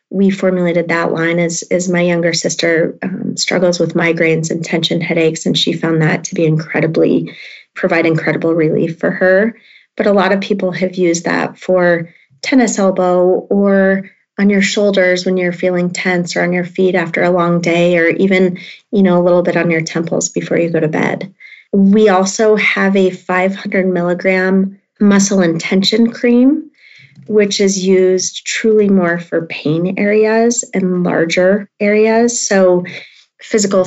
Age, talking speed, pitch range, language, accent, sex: 30-49, 165 wpm, 175-200 Hz, English, American, female